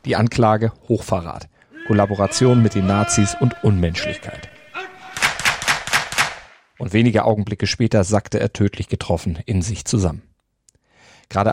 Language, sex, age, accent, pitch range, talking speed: German, male, 40-59, German, 95-115 Hz, 110 wpm